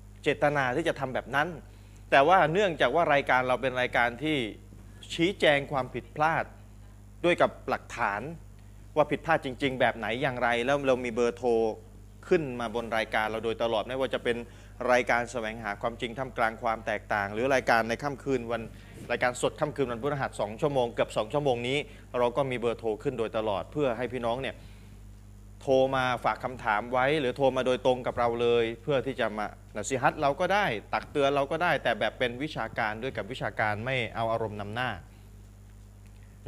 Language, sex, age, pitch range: Thai, male, 20-39, 105-130 Hz